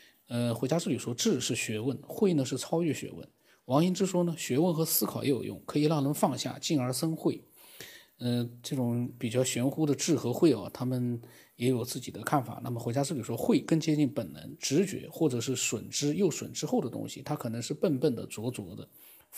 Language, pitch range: Chinese, 120-150 Hz